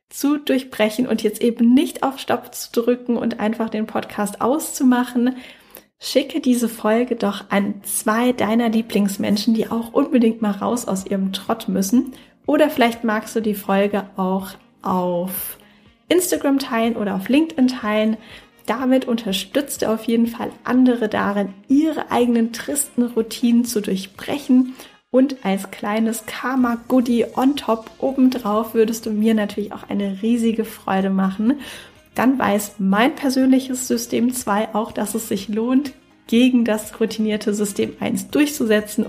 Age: 10-29